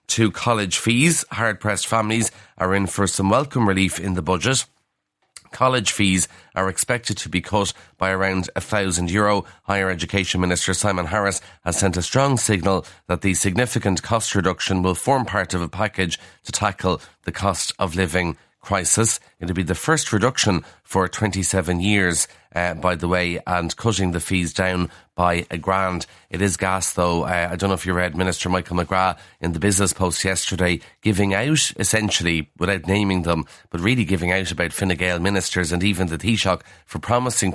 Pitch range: 90-105 Hz